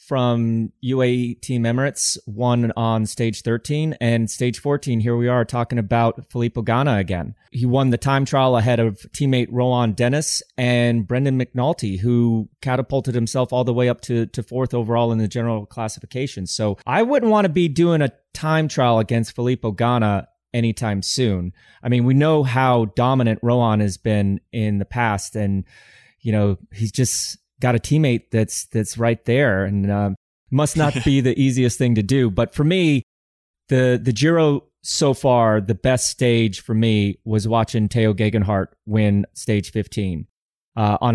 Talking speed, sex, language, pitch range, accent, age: 170 wpm, male, English, 110-130 Hz, American, 30-49